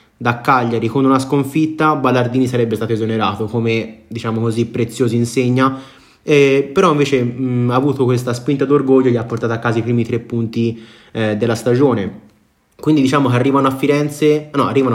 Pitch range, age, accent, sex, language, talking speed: 115-145 Hz, 20-39, native, male, Italian, 175 wpm